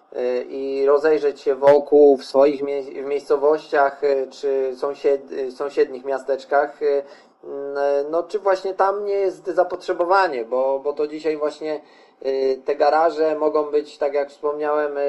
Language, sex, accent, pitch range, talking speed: Polish, male, native, 140-175 Hz, 125 wpm